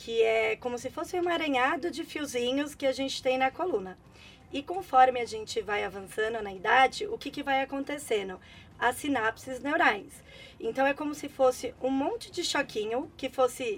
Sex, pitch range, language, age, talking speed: female, 235-325 Hz, Portuguese, 20-39, 185 wpm